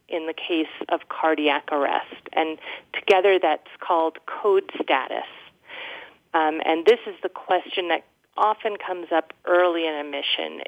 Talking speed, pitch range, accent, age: 140 wpm, 165-260 Hz, American, 40-59